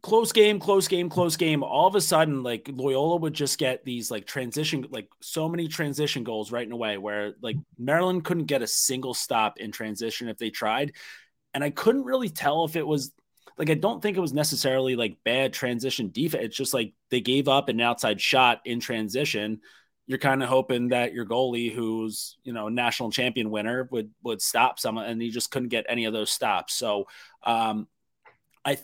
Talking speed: 205 wpm